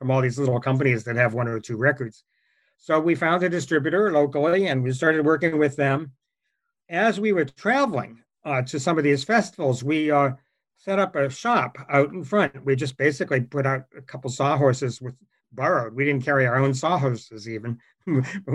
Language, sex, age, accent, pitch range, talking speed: English, male, 60-79, American, 130-160 Hz, 195 wpm